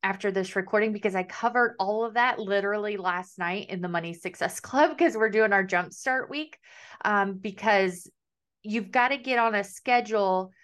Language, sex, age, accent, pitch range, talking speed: English, female, 30-49, American, 185-220 Hz, 180 wpm